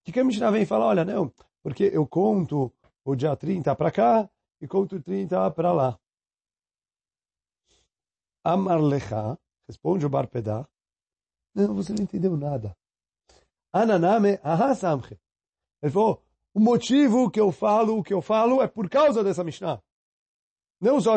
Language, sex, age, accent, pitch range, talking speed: Portuguese, male, 40-59, Brazilian, 150-205 Hz, 140 wpm